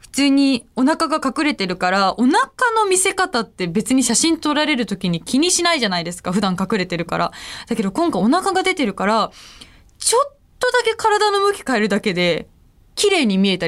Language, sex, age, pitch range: Japanese, female, 20-39, 185-275 Hz